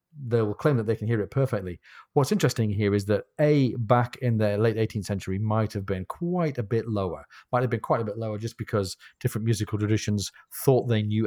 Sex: male